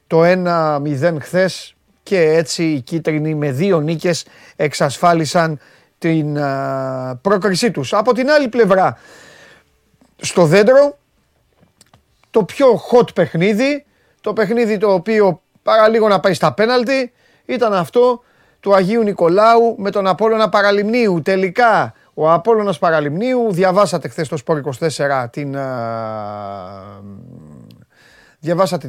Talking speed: 115 wpm